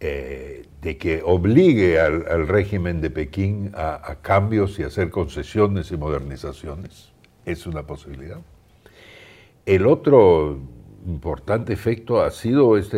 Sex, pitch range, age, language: male, 80-105 Hz, 60-79, Spanish